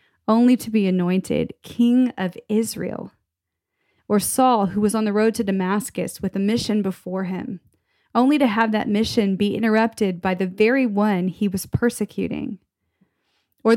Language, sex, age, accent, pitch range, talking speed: English, female, 30-49, American, 190-225 Hz, 155 wpm